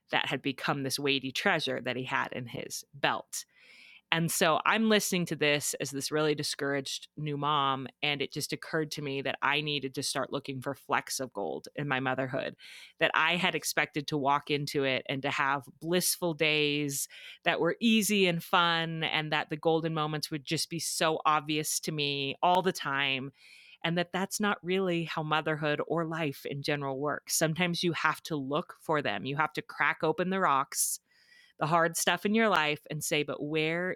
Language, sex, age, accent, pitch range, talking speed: English, female, 30-49, American, 140-165 Hz, 200 wpm